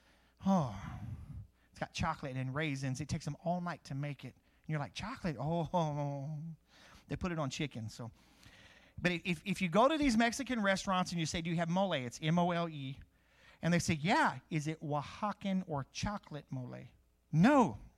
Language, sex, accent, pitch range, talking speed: English, male, American, 140-205 Hz, 180 wpm